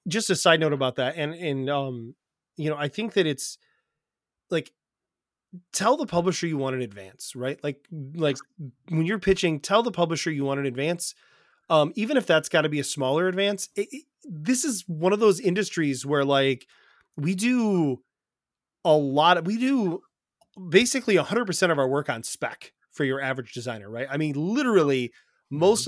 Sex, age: male, 30-49